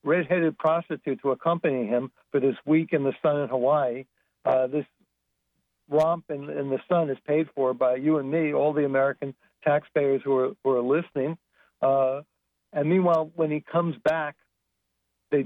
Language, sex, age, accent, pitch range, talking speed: English, male, 60-79, American, 130-155 Hz, 170 wpm